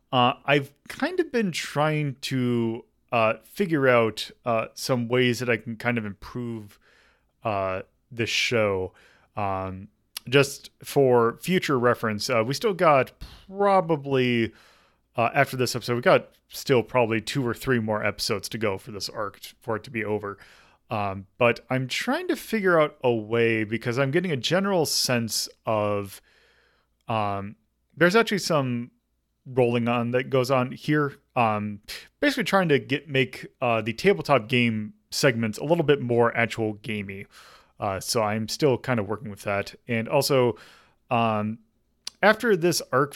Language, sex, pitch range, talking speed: English, male, 110-140 Hz, 155 wpm